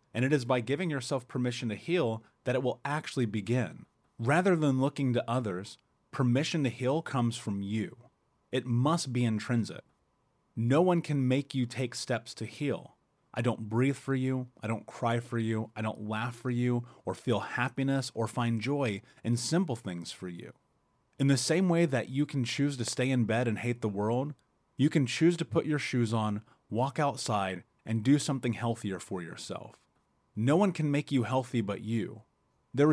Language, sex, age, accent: English, male, 30-49, American